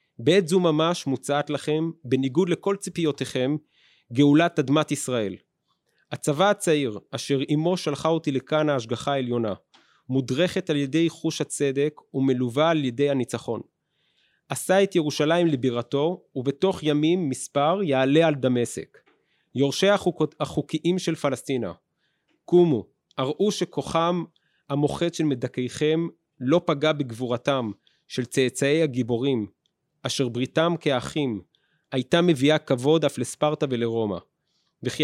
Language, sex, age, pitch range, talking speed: Hebrew, male, 30-49, 130-165 Hz, 110 wpm